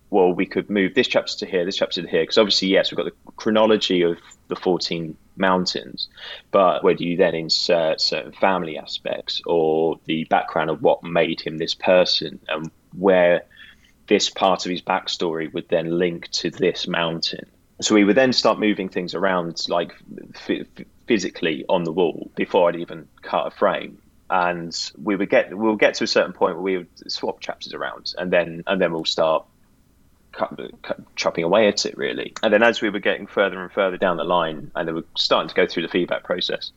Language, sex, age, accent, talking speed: English, male, 20-39, British, 205 wpm